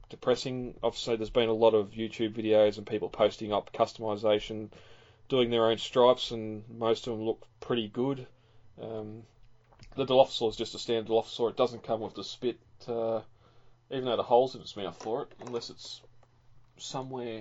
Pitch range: 115-125 Hz